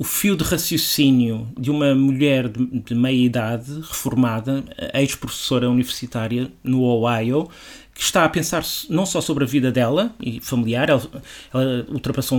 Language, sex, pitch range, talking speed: Portuguese, male, 130-170 Hz, 145 wpm